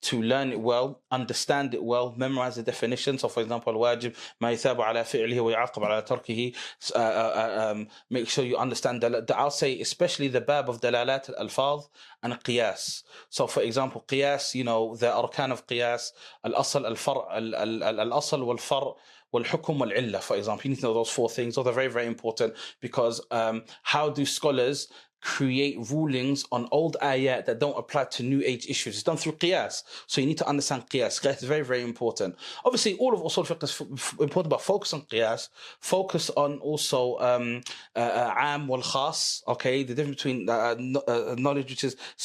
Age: 30-49